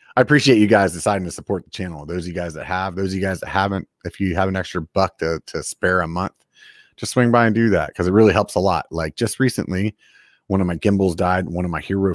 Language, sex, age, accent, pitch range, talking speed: English, male, 30-49, American, 80-105 Hz, 275 wpm